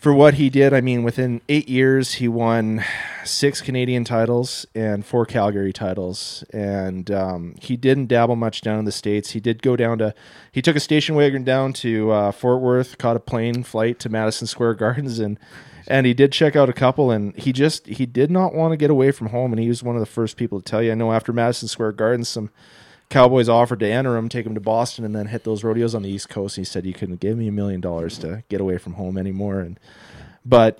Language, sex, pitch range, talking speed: English, male, 105-125 Hz, 240 wpm